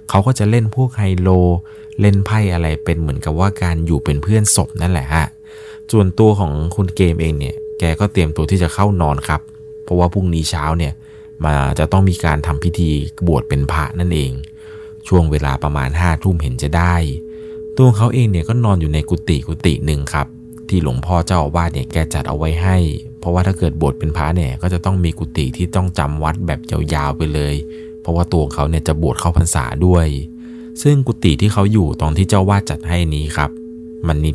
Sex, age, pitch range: male, 20-39, 75-95 Hz